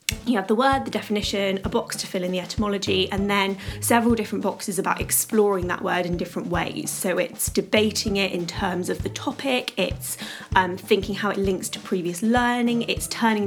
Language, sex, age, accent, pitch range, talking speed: English, female, 20-39, British, 185-225 Hz, 200 wpm